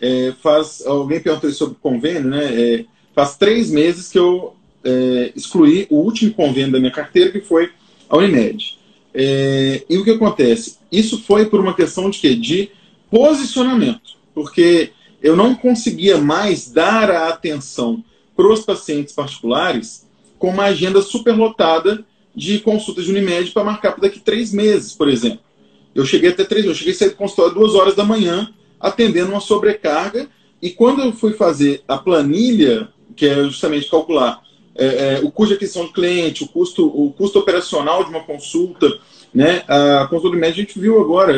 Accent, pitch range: Brazilian, 155-220 Hz